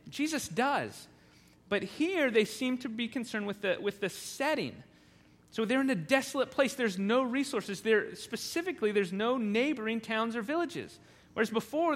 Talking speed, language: 165 wpm, English